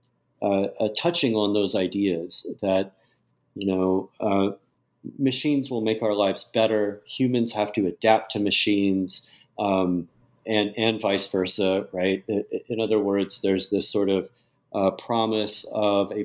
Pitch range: 95-115 Hz